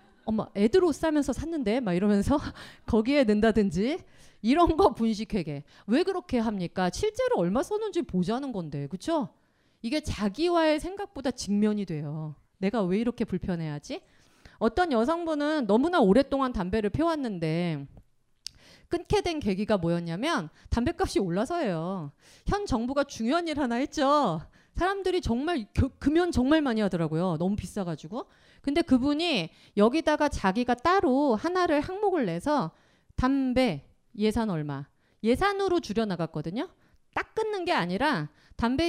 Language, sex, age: Korean, female, 30-49